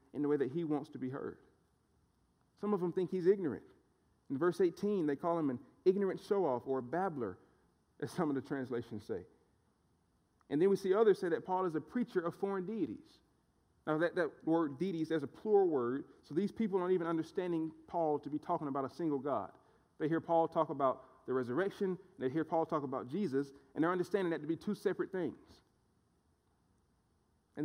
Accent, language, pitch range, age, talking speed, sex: American, English, 130-175 Hz, 40-59, 200 wpm, male